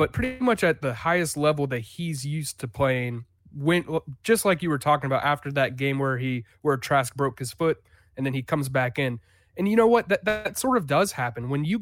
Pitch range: 130-165 Hz